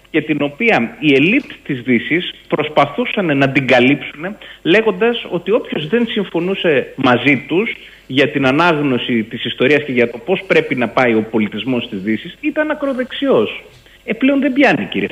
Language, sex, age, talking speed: Greek, male, 30-49, 160 wpm